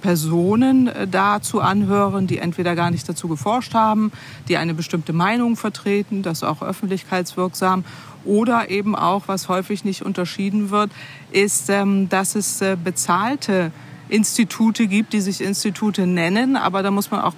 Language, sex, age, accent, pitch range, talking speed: German, female, 40-59, German, 175-215 Hz, 140 wpm